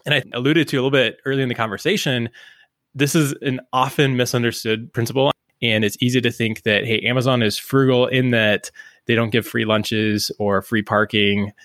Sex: male